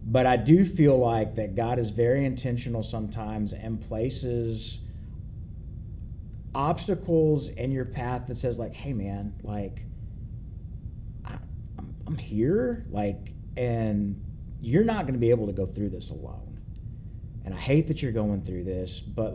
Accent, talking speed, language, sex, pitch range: American, 150 wpm, English, male, 100-125 Hz